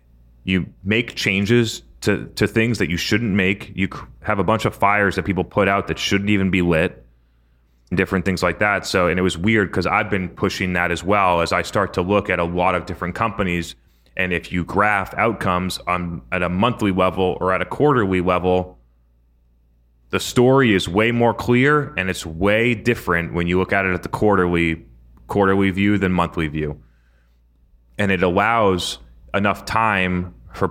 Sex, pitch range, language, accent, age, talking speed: male, 80-100 Hz, English, American, 30-49, 190 wpm